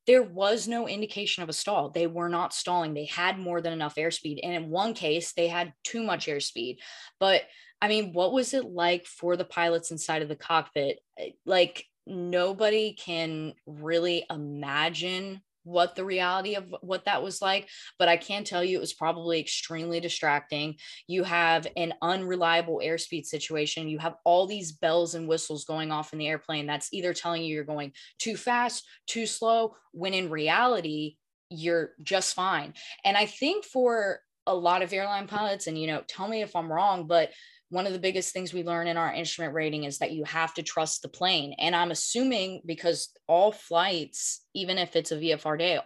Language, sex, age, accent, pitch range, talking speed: English, female, 20-39, American, 165-200 Hz, 190 wpm